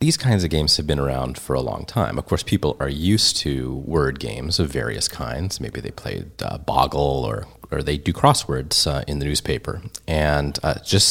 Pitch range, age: 70-90 Hz, 30-49